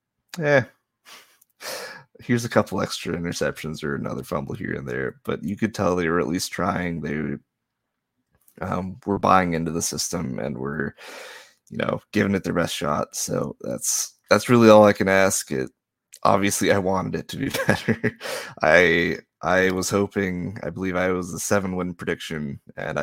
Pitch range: 90-110 Hz